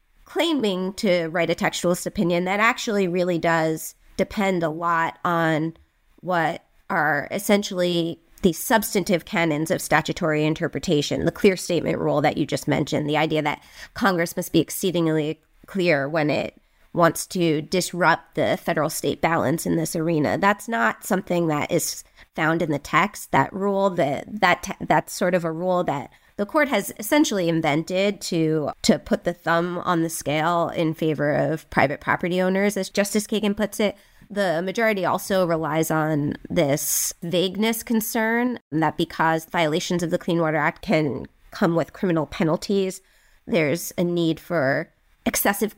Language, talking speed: English, 155 wpm